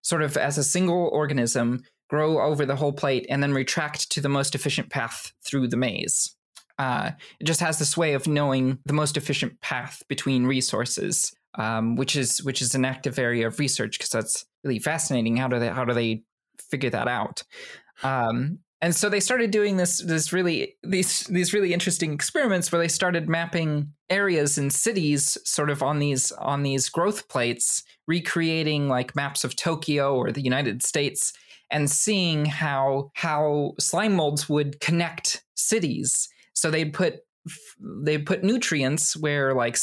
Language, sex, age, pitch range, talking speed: English, male, 20-39, 130-165 Hz, 170 wpm